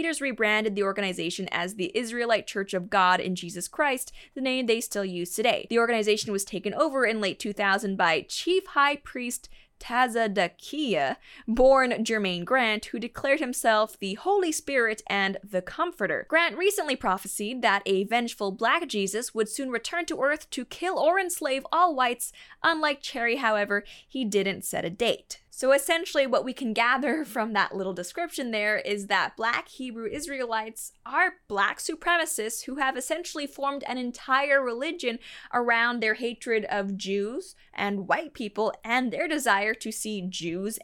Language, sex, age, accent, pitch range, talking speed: English, female, 20-39, American, 200-280 Hz, 165 wpm